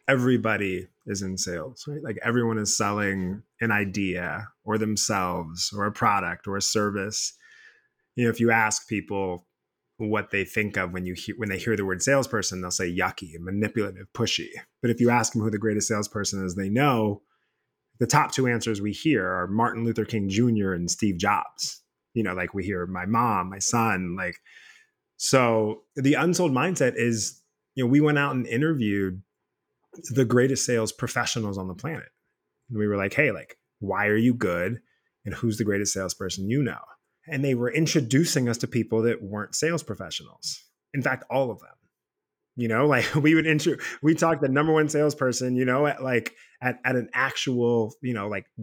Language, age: English, 20-39